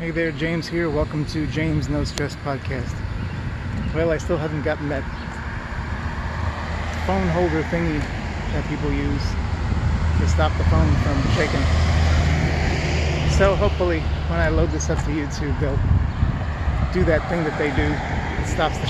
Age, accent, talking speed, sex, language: 30-49, American, 150 wpm, male, English